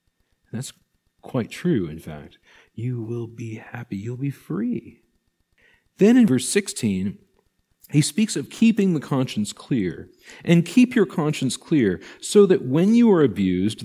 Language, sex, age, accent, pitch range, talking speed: English, male, 40-59, American, 110-175 Hz, 145 wpm